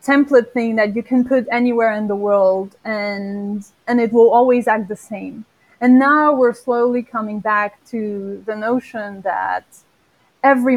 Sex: female